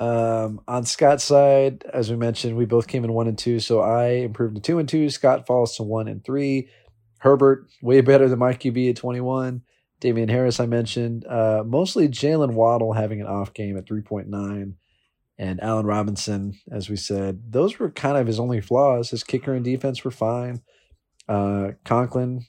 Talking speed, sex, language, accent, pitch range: 185 wpm, male, English, American, 110-130 Hz